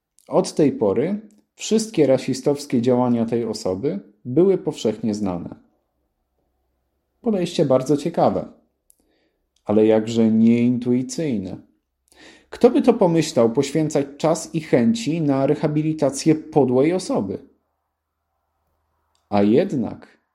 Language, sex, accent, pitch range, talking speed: Polish, male, native, 115-160 Hz, 90 wpm